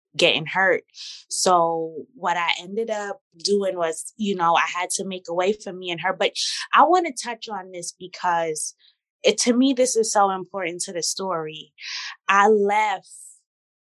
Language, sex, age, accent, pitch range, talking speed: English, female, 20-39, American, 175-215 Hz, 180 wpm